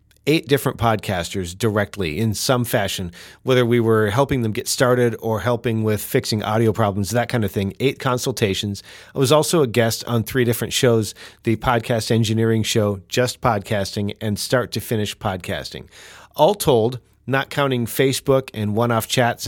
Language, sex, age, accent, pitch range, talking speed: English, male, 40-59, American, 110-135 Hz, 170 wpm